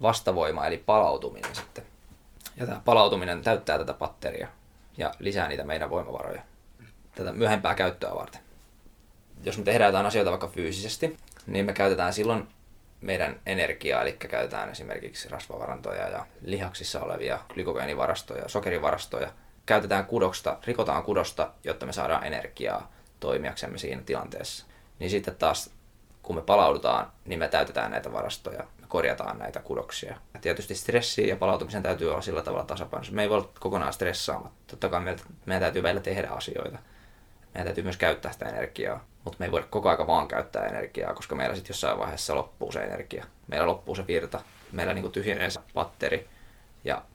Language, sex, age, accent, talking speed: Finnish, male, 20-39, native, 155 wpm